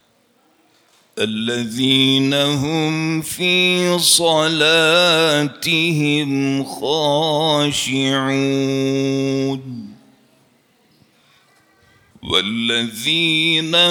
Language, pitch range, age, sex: Turkish, 150-175 Hz, 50-69, male